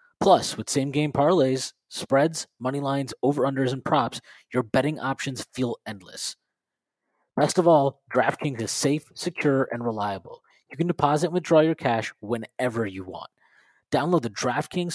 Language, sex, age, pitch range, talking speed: English, male, 20-39, 110-160 Hz, 150 wpm